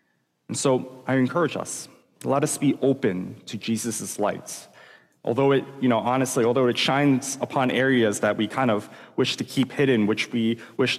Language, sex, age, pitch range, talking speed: English, male, 30-49, 105-130 Hz, 180 wpm